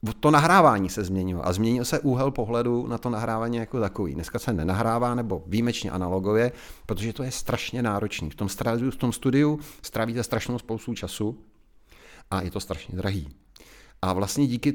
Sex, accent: male, native